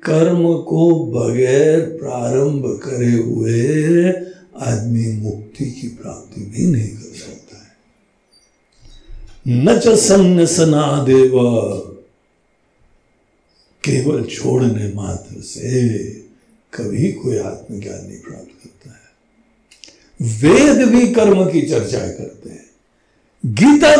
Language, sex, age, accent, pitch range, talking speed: Hindi, male, 60-79, native, 120-200 Hz, 95 wpm